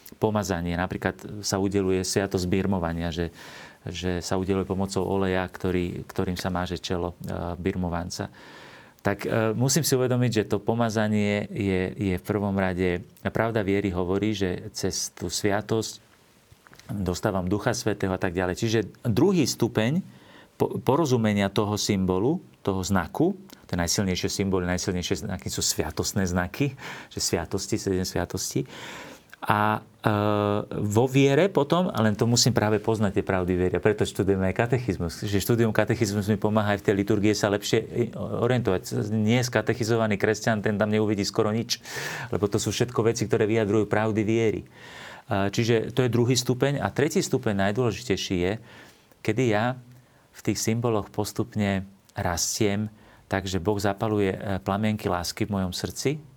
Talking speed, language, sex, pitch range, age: 145 wpm, Slovak, male, 95-110 Hz, 40-59